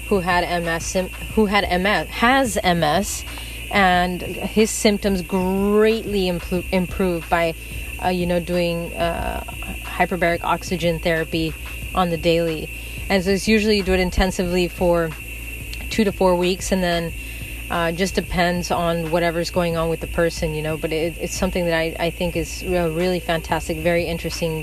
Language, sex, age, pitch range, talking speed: English, female, 30-49, 165-190 Hz, 155 wpm